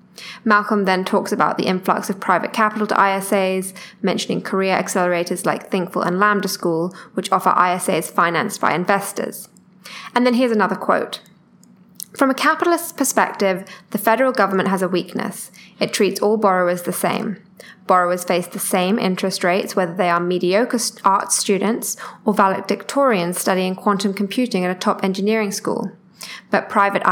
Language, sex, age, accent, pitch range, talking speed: English, female, 10-29, British, 185-215 Hz, 155 wpm